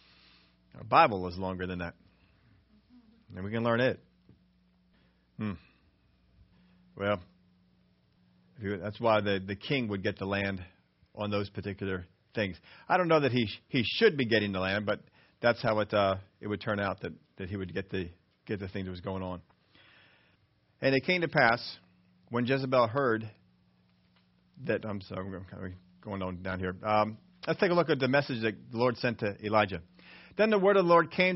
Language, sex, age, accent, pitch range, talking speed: English, male, 40-59, American, 95-145 Hz, 190 wpm